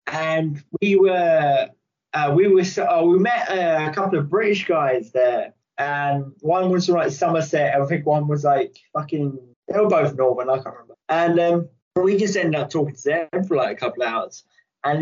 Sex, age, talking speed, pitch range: male, 20-39, 210 wpm, 145-190 Hz